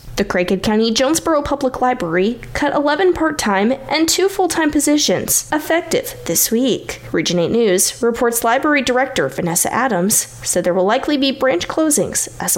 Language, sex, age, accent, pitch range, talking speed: English, female, 10-29, American, 185-300 Hz, 155 wpm